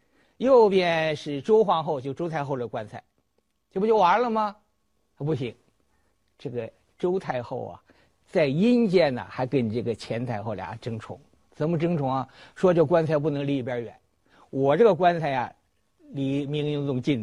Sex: male